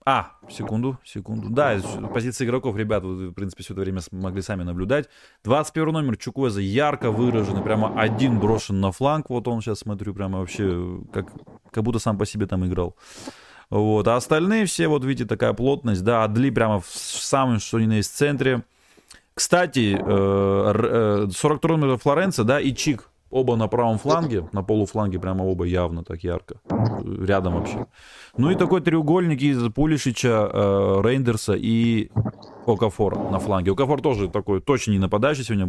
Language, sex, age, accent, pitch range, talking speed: Russian, male, 30-49, native, 100-130 Hz, 160 wpm